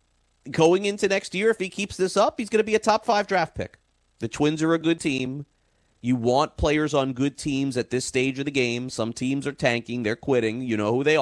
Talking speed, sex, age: 240 wpm, male, 30-49